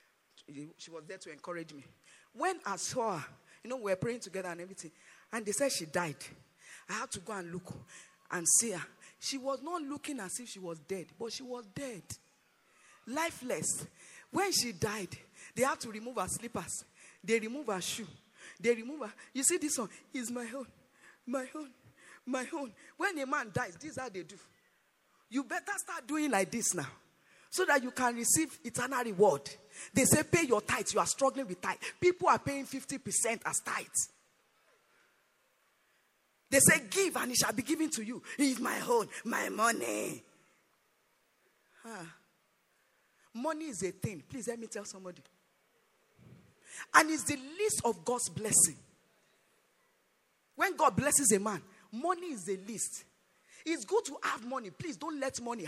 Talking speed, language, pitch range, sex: 175 wpm, English, 190-285 Hz, female